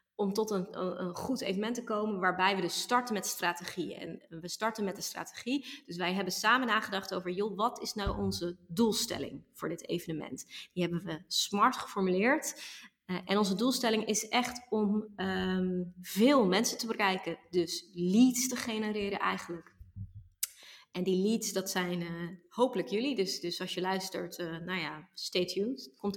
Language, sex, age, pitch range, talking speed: Dutch, female, 20-39, 180-220 Hz, 170 wpm